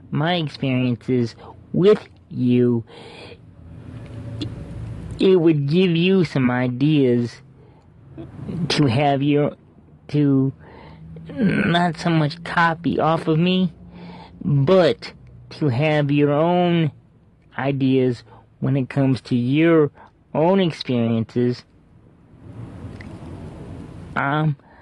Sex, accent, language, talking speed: male, American, English, 85 wpm